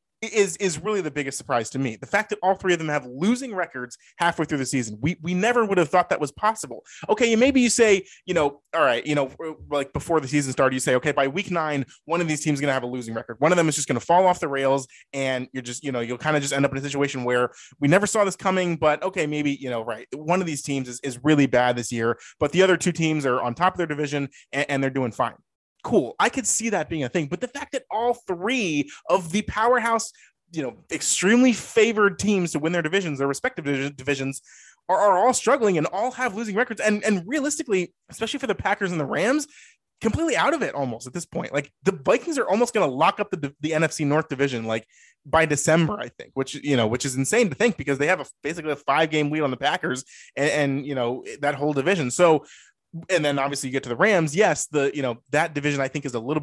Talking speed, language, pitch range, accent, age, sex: 265 wpm, English, 140-200 Hz, American, 20-39, male